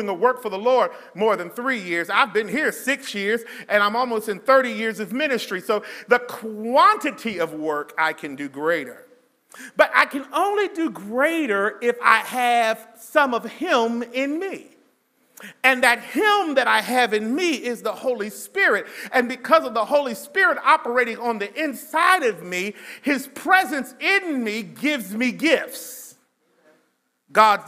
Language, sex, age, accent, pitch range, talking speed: English, male, 40-59, American, 210-280 Hz, 165 wpm